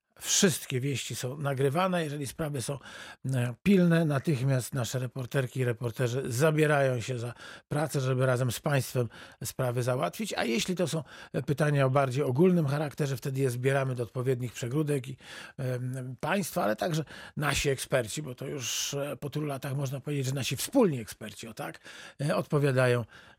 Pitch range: 125-150 Hz